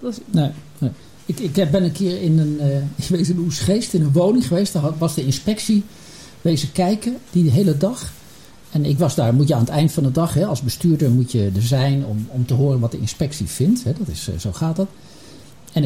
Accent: Dutch